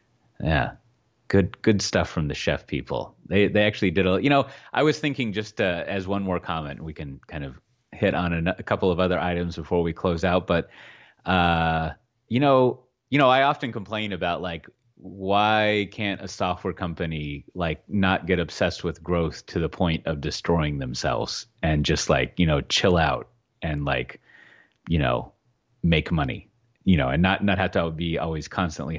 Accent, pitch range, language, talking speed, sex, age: American, 85-115 Hz, English, 190 wpm, male, 30-49